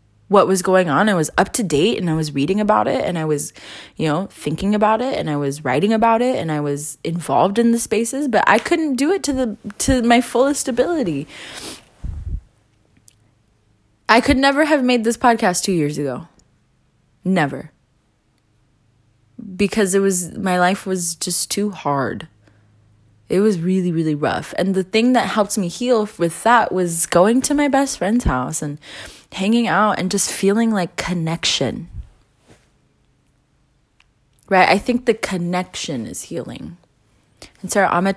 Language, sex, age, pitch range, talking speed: English, female, 20-39, 150-235 Hz, 165 wpm